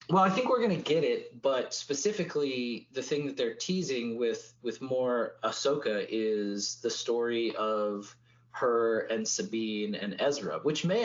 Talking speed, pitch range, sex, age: 165 wpm, 110-145 Hz, male, 20-39